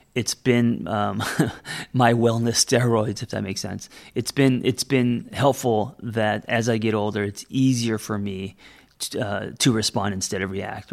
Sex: male